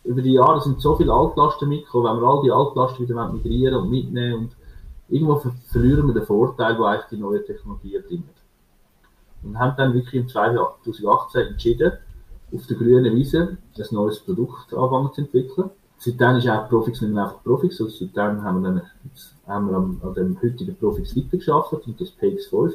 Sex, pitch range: male, 105-140 Hz